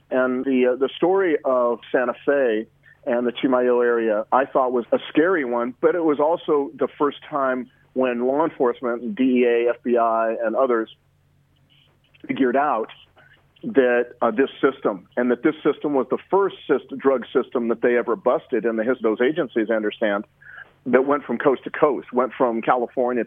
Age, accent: 40-59, American